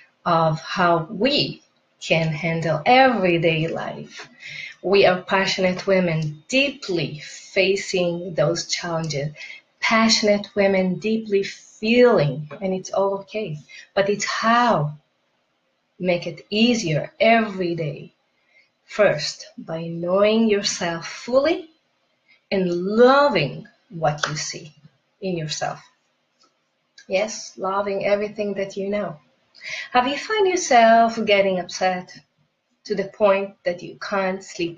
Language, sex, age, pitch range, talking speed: English, female, 30-49, 175-220 Hz, 105 wpm